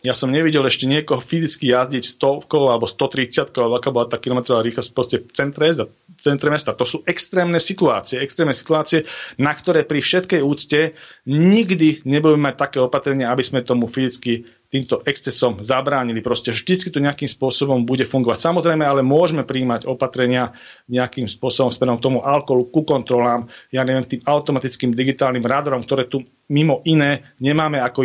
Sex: male